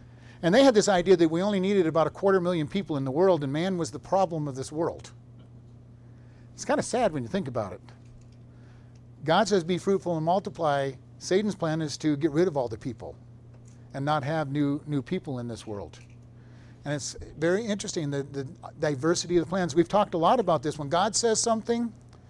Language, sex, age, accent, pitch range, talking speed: English, male, 50-69, American, 120-190 Hz, 215 wpm